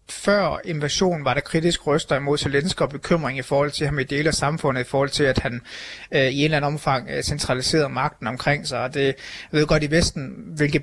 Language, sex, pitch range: Danish, male, 140-160 Hz